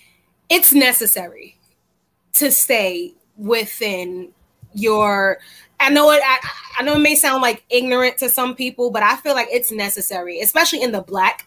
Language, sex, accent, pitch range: English, female, American, 210-250 Hz